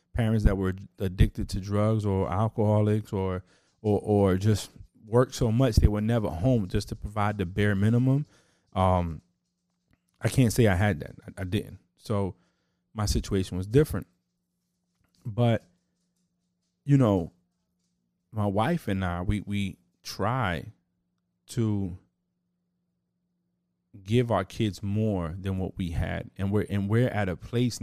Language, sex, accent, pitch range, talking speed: English, male, American, 95-115 Hz, 140 wpm